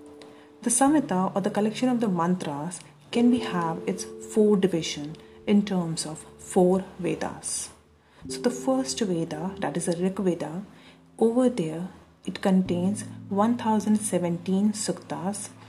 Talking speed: 130 wpm